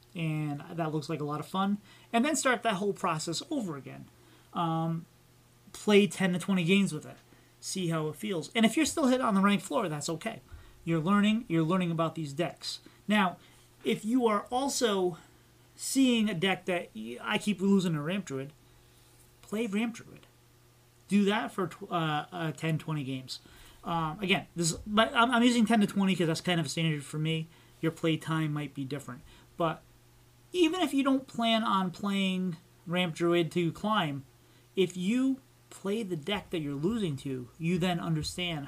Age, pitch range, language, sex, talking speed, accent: 30-49, 145-200 Hz, English, male, 190 wpm, American